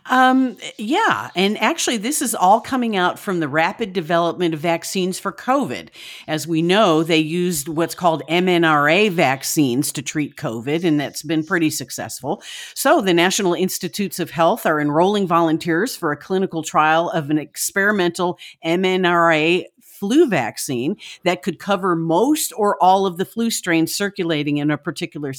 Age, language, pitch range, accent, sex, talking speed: 50-69, English, 160-200 Hz, American, female, 160 wpm